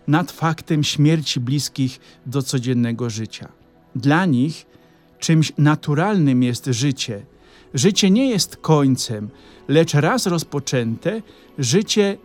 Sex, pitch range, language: male, 130-165 Hz, Polish